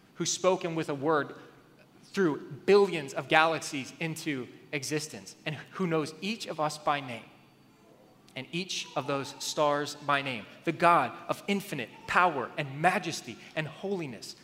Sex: male